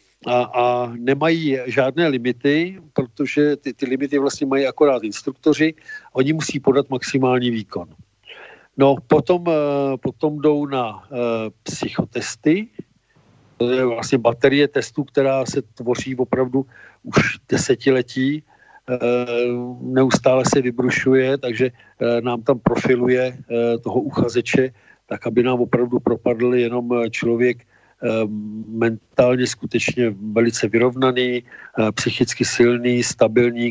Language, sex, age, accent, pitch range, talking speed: Czech, male, 50-69, native, 120-135 Hz, 100 wpm